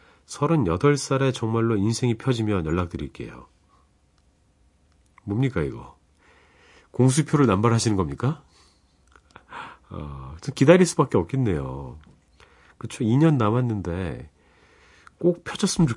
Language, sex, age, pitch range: Korean, male, 40-59, 75-125 Hz